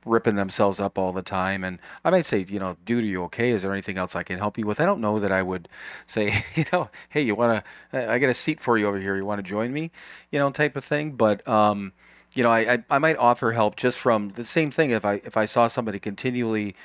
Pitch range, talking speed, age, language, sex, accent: 95-115 Hz, 280 wpm, 40-59, English, male, American